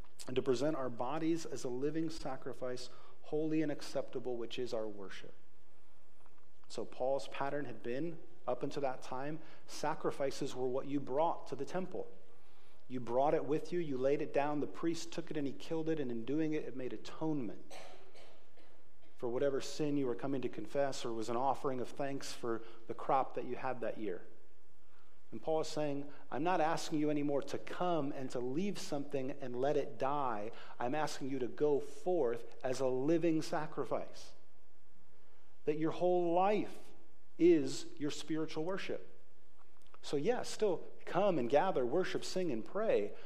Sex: male